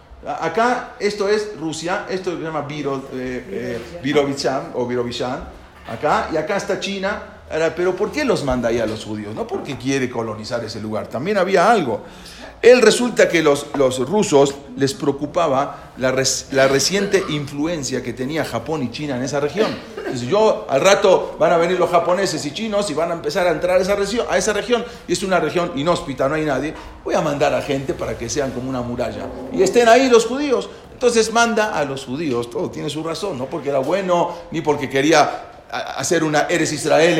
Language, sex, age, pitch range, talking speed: English, male, 40-59, 135-205 Hz, 195 wpm